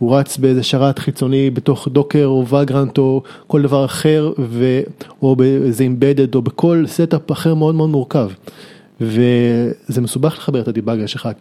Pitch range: 130-170 Hz